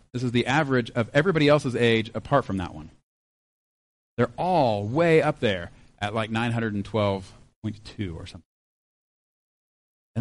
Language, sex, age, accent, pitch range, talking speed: English, male, 30-49, American, 115-150 Hz, 135 wpm